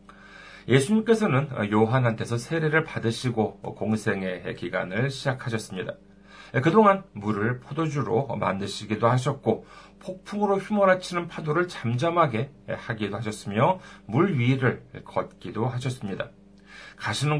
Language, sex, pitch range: Korean, male, 115-180 Hz